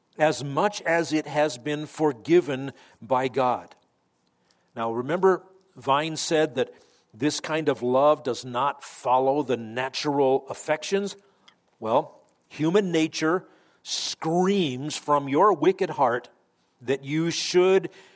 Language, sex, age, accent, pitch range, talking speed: English, male, 50-69, American, 125-155 Hz, 115 wpm